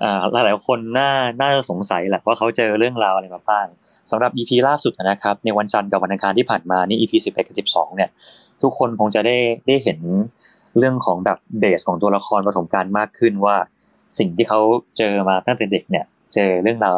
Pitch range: 100-130 Hz